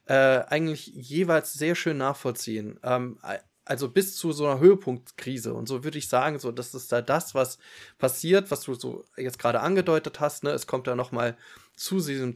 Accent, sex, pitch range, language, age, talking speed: German, male, 125-155 Hz, German, 20-39, 190 wpm